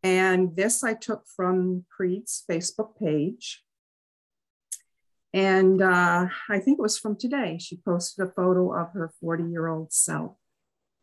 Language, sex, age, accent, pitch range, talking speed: English, female, 50-69, American, 170-205 Hz, 130 wpm